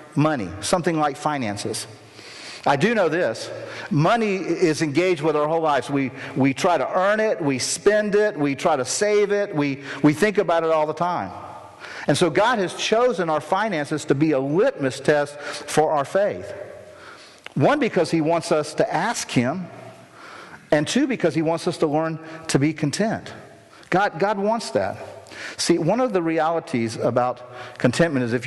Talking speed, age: 175 wpm, 50-69